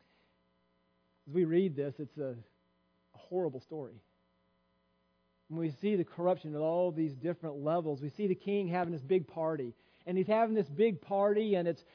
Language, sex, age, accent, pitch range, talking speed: English, male, 40-59, American, 150-195 Hz, 175 wpm